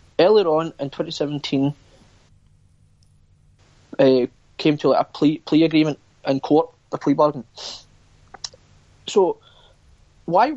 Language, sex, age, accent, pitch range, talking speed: English, male, 30-49, British, 130-170 Hz, 110 wpm